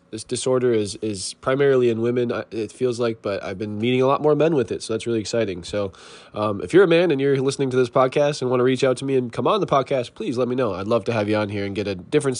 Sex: male